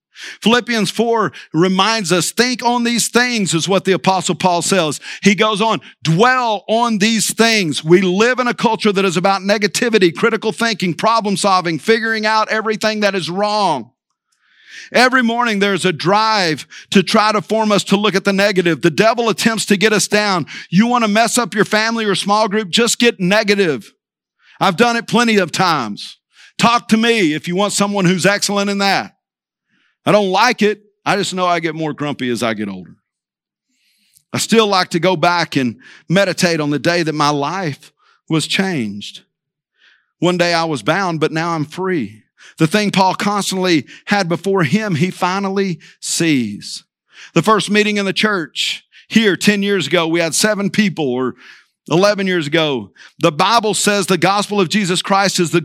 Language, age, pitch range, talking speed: English, 50-69, 175-215 Hz, 185 wpm